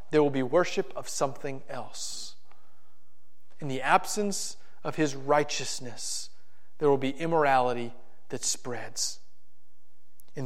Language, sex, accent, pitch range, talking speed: English, male, American, 120-160 Hz, 115 wpm